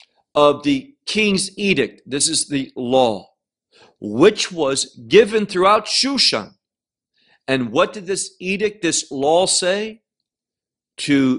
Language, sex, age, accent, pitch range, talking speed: English, male, 50-69, American, 150-220 Hz, 115 wpm